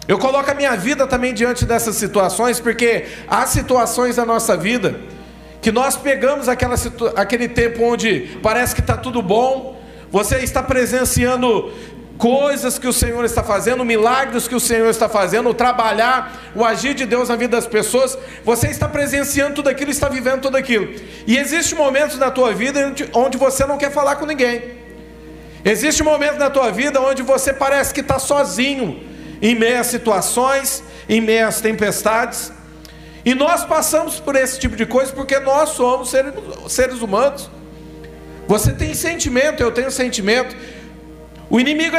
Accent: Brazilian